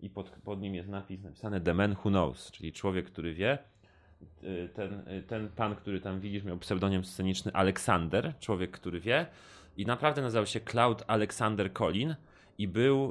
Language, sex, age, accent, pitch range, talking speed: Polish, male, 30-49, native, 95-115 Hz, 170 wpm